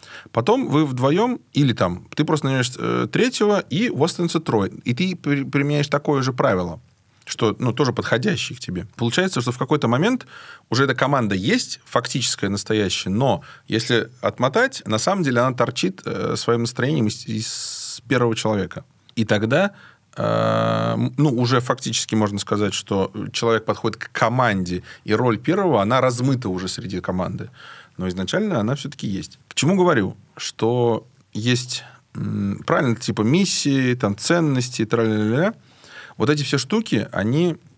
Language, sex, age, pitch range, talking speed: Russian, male, 30-49, 110-145 Hz, 150 wpm